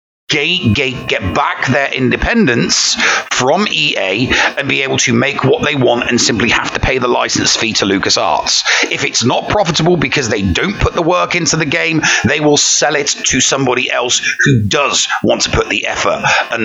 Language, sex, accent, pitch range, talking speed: English, male, British, 120-160 Hz, 190 wpm